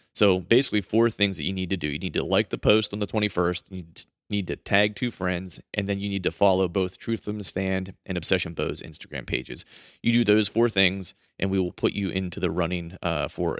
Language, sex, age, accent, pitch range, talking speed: English, male, 30-49, American, 90-105 Hz, 245 wpm